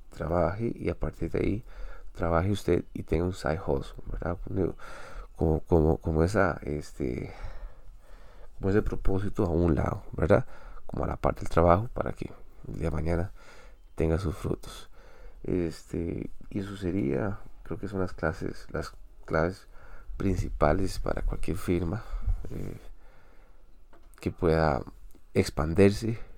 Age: 30-49